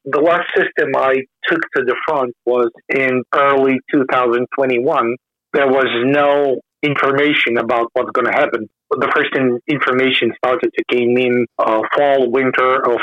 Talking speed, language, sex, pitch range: 150 wpm, English, male, 120-140 Hz